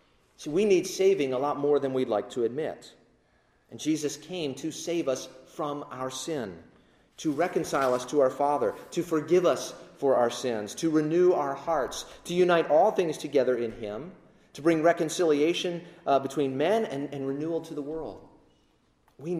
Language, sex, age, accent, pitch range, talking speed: English, male, 40-59, American, 140-190 Hz, 175 wpm